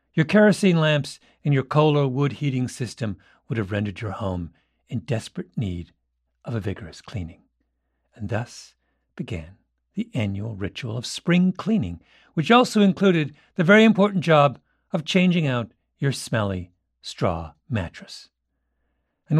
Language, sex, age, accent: English, male, 50-69, American